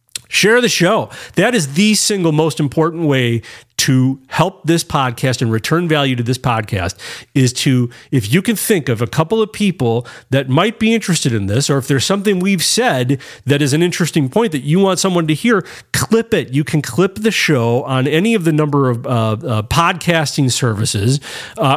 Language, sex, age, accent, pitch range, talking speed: English, male, 40-59, American, 125-185 Hz, 200 wpm